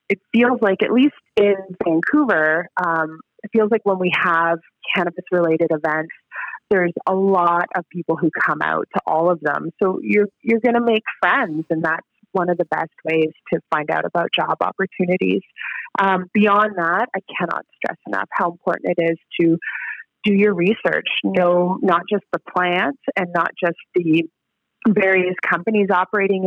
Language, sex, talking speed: English, female, 170 wpm